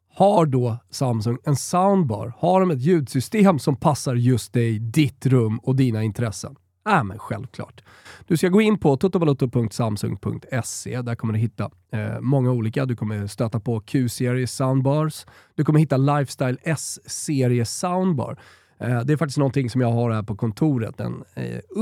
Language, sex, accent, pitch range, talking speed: Swedish, male, native, 115-155 Hz, 170 wpm